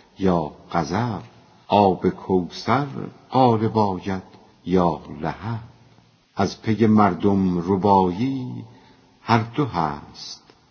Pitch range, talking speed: 90-110 Hz, 80 wpm